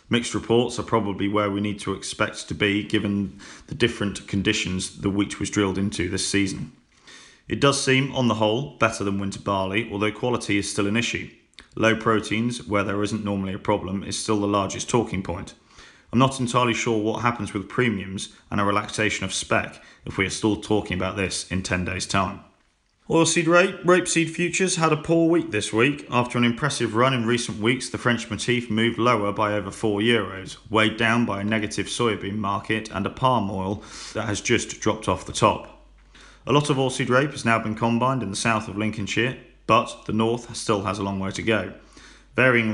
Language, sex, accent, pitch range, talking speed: English, male, British, 100-120 Hz, 205 wpm